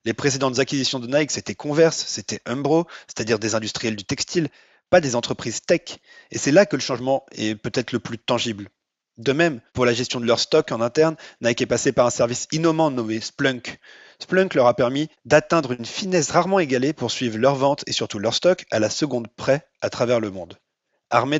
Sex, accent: male, French